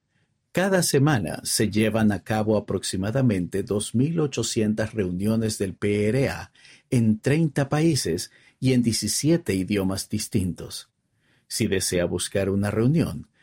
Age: 50-69